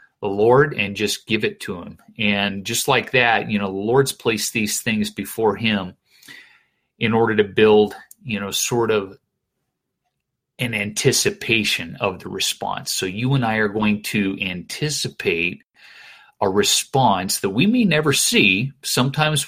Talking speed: 155 wpm